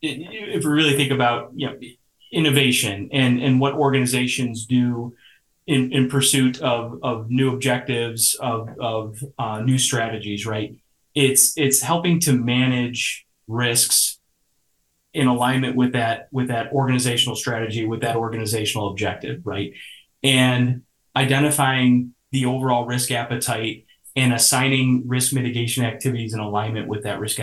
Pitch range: 115-130 Hz